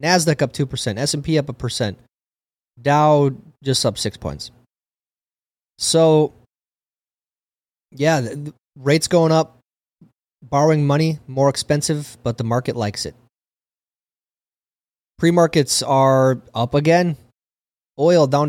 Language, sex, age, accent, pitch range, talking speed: English, male, 30-49, American, 115-150 Hz, 105 wpm